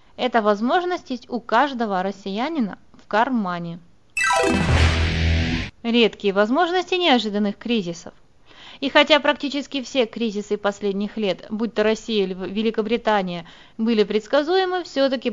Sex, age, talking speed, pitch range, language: female, 20-39, 105 wpm, 205-280 Hz, Russian